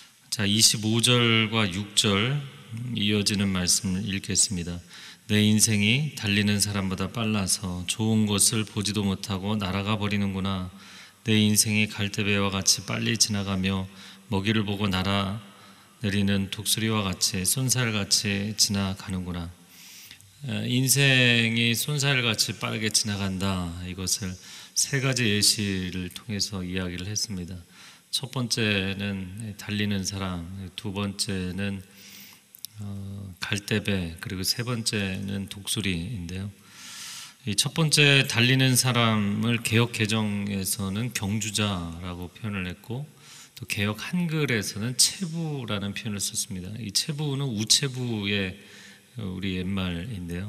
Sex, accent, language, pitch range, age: male, native, Korean, 95-115 Hz, 30-49